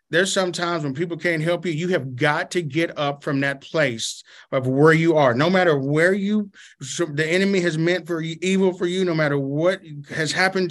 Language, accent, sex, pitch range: English, American, male, 145-175 Hz